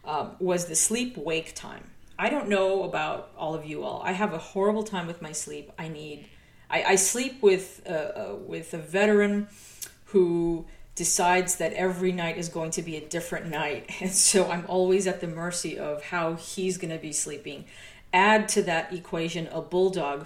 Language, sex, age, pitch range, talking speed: English, female, 40-59, 160-195 Hz, 190 wpm